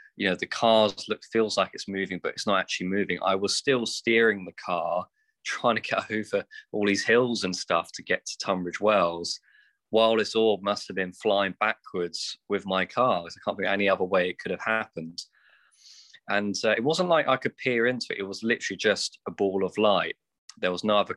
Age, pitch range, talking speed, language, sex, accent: 20-39, 95-125 Hz, 220 wpm, English, male, British